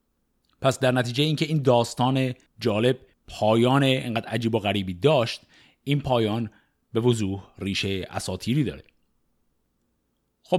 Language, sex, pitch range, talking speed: Persian, male, 105-165 Hz, 120 wpm